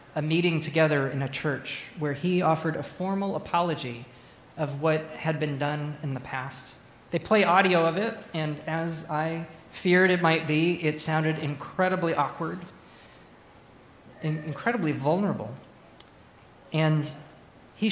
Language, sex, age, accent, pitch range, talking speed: English, male, 40-59, American, 140-180 Hz, 135 wpm